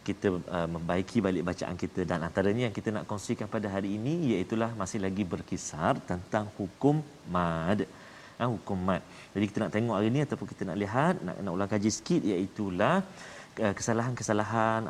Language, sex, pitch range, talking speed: Malayalam, male, 105-140 Hz, 175 wpm